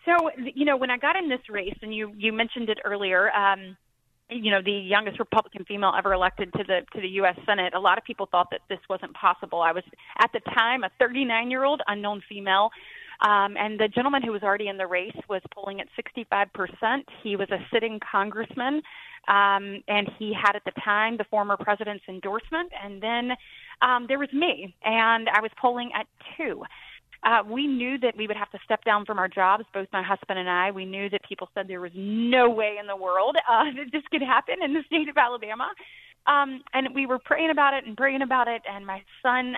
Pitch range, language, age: 195-250 Hz, English, 30-49